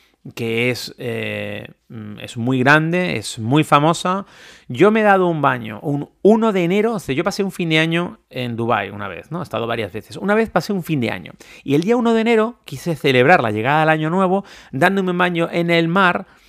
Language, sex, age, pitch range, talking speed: Spanish, male, 30-49, 125-185 Hz, 225 wpm